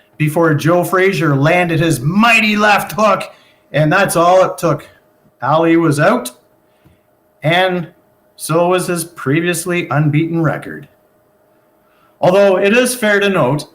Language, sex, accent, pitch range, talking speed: English, male, American, 160-210 Hz, 125 wpm